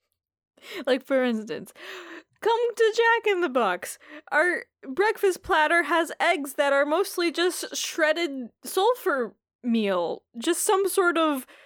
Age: 10-29